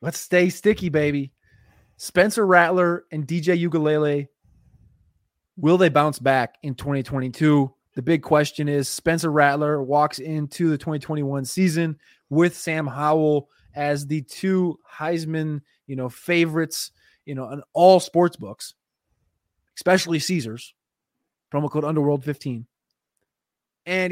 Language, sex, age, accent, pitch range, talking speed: English, male, 20-39, American, 145-185 Hz, 120 wpm